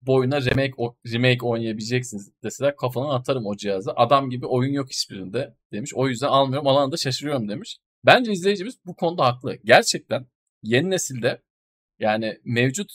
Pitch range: 115-140 Hz